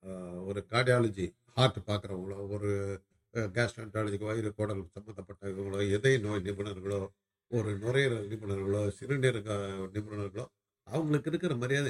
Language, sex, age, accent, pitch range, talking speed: Tamil, male, 60-79, native, 100-155 Hz, 100 wpm